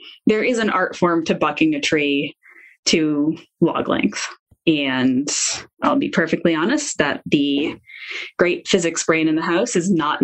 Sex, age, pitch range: female, 10-29, 165-245 Hz